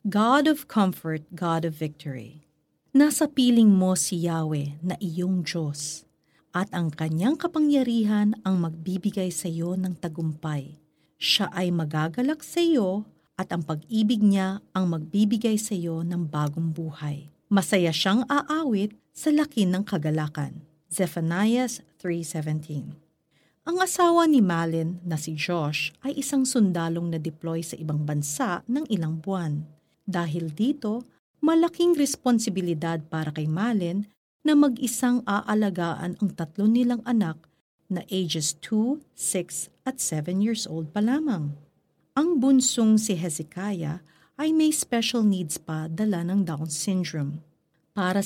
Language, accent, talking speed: Filipino, native, 130 wpm